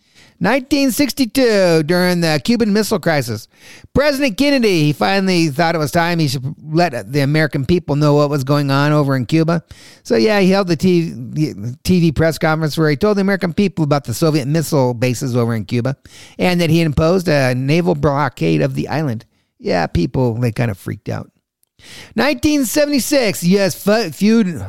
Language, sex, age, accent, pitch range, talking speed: English, male, 50-69, American, 145-210 Hz, 165 wpm